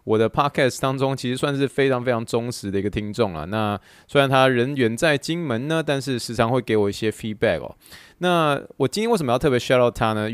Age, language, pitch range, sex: 20-39, Chinese, 105-135 Hz, male